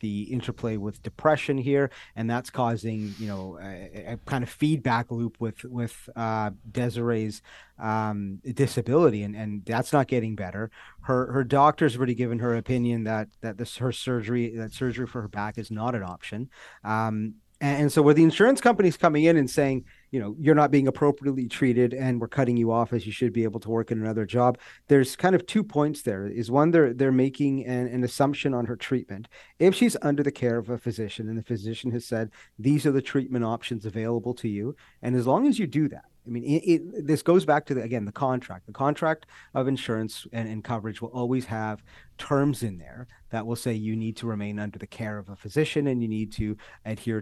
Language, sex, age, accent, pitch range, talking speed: English, male, 40-59, American, 110-140 Hz, 215 wpm